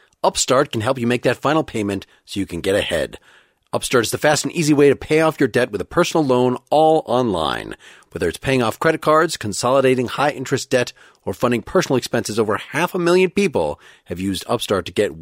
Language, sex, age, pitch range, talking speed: English, male, 40-59, 105-140 Hz, 215 wpm